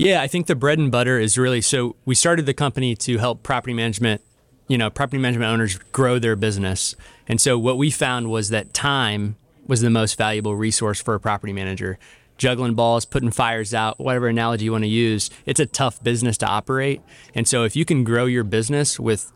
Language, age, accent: English, 20-39, American